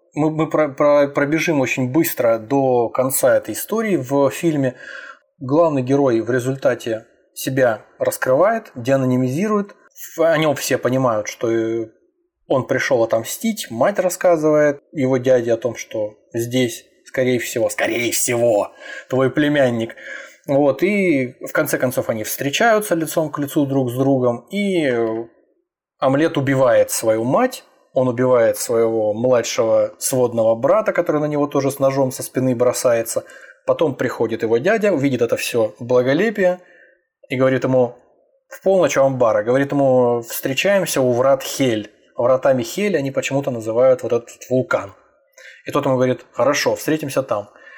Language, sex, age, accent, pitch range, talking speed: Russian, male, 20-39, native, 125-175 Hz, 135 wpm